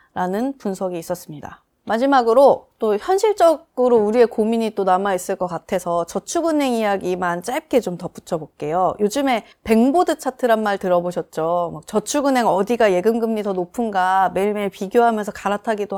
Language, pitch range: Korean, 190-250 Hz